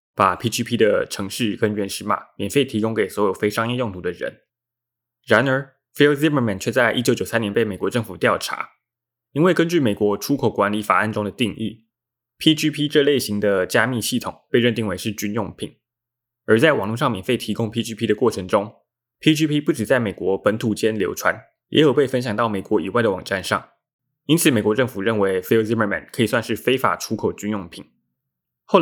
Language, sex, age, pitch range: Chinese, male, 20-39, 105-125 Hz